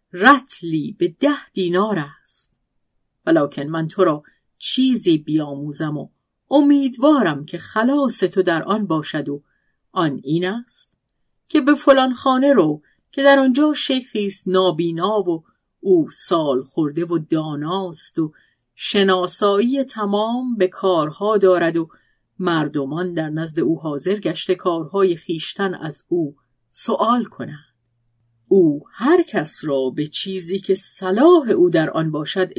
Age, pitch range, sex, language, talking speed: 40-59, 160-225 Hz, female, Persian, 125 wpm